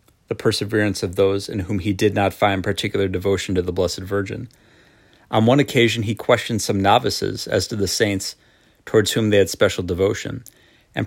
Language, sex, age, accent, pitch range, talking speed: English, male, 30-49, American, 100-115 Hz, 185 wpm